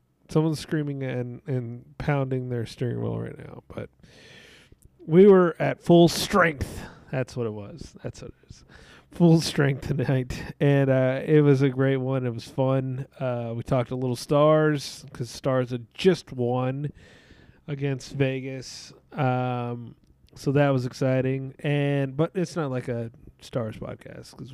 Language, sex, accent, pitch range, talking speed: English, male, American, 120-150 Hz, 155 wpm